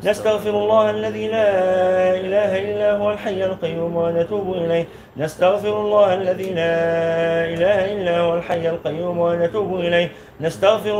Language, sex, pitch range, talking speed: Arabic, male, 170-185 Hz, 125 wpm